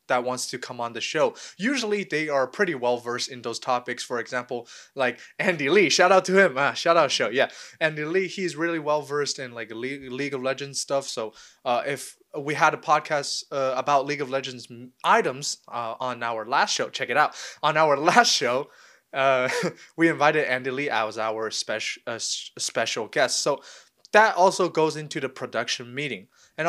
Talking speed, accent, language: 200 wpm, American, English